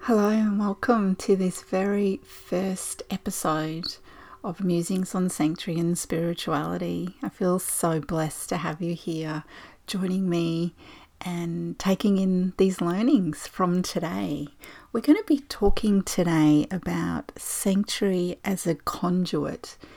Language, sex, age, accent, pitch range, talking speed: English, female, 30-49, Australian, 165-200 Hz, 125 wpm